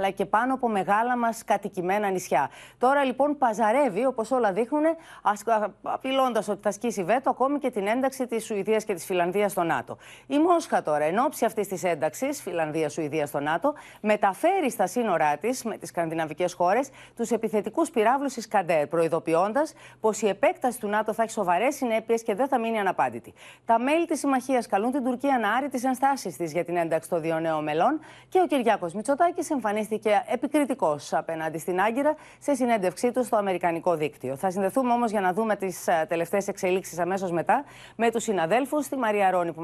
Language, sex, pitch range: Greek, female, 190-255 Hz